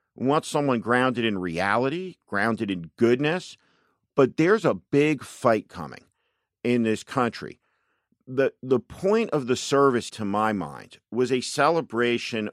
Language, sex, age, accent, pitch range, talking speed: English, male, 50-69, American, 105-140 Hz, 145 wpm